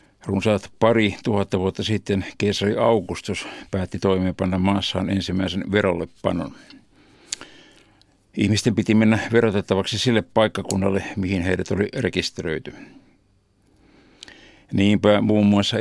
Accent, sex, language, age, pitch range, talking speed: native, male, Finnish, 60-79, 95-105 Hz, 95 wpm